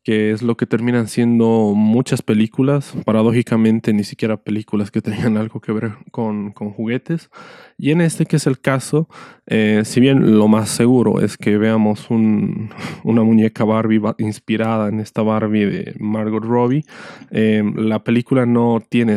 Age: 20-39